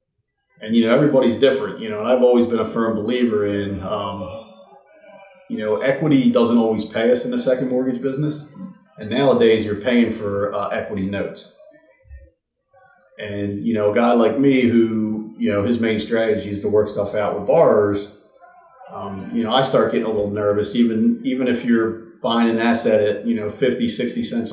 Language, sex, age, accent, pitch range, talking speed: English, male, 40-59, American, 105-135 Hz, 190 wpm